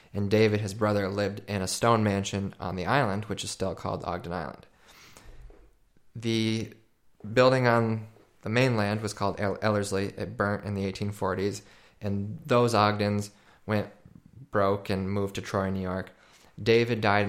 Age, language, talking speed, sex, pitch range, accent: 20-39, English, 155 wpm, male, 95-110 Hz, American